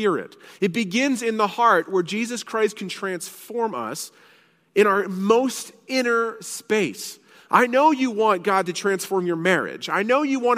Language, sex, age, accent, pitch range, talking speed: English, male, 30-49, American, 175-230 Hz, 165 wpm